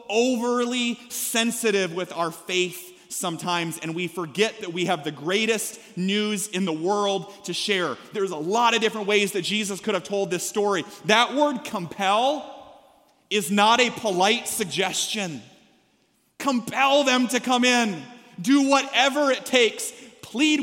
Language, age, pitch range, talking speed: English, 30-49, 200-250 Hz, 150 wpm